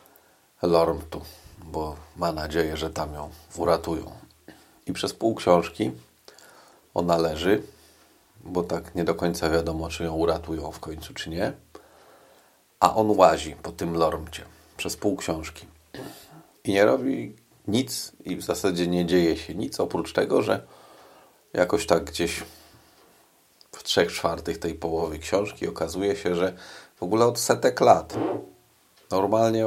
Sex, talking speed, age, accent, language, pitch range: male, 140 wpm, 40-59, native, Polish, 80-90 Hz